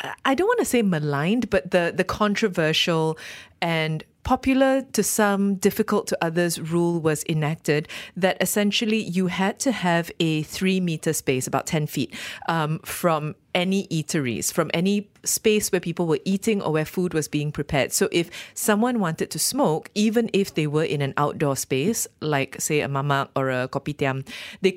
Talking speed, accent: 170 wpm, Malaysian